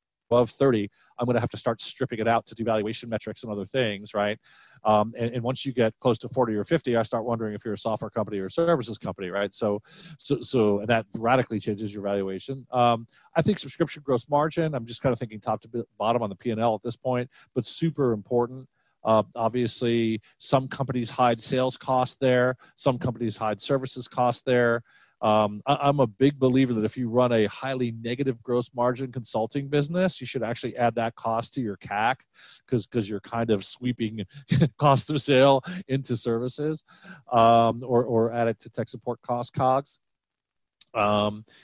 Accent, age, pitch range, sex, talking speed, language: American, 40-59, 110-130 Hz, male, 195 wpm, English